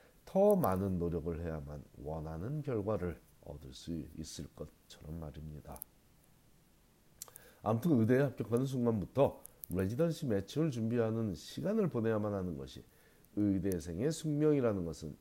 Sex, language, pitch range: male, Korean, 90-145 Hz